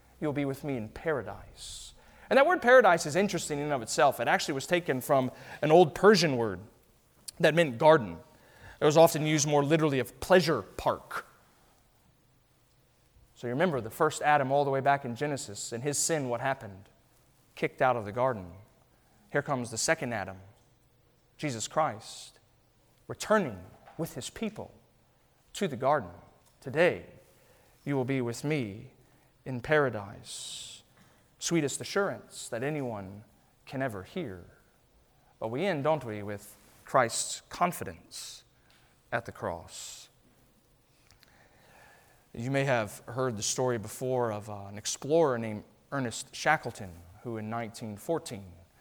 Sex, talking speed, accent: male, 140 wpm, American